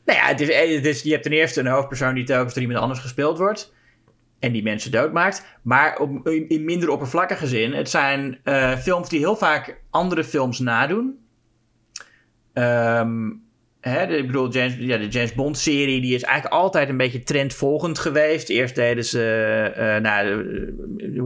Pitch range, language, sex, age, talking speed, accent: 115-140 Hz, Dutch, male, 30-49, 150 wpm, Dutch